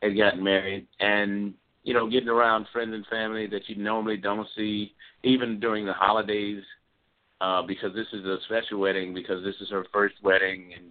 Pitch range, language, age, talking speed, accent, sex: 95-115 Hz, English, 50-69, 185 wpm, American, male